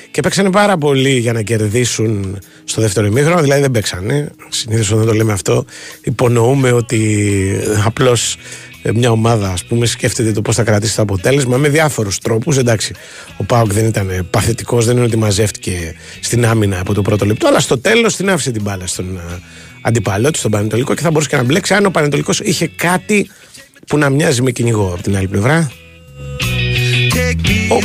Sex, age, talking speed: male, 30-49, 180 wpm